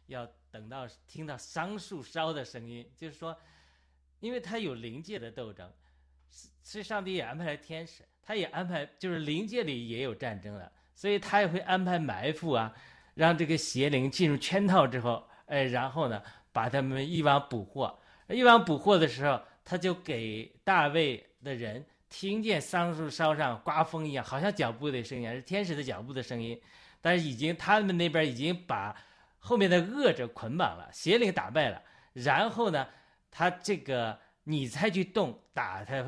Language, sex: Chinese, male